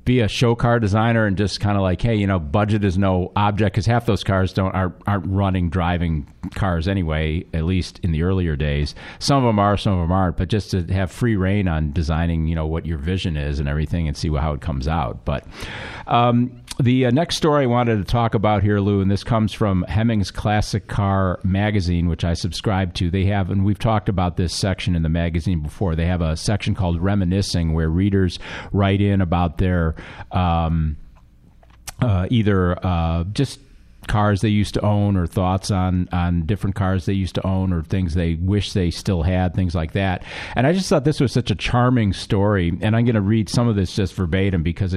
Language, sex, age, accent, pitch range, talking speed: English, male, 40-59, American, 85-110 Hz, 220 wpm